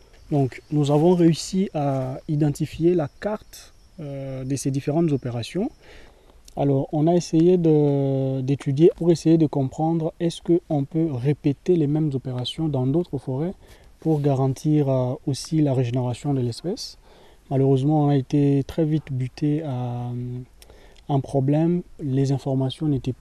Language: French